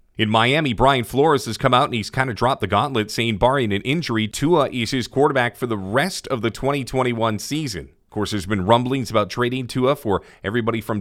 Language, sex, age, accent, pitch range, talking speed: English, male, 40-59, American, 110-130 Hz, 220 wpm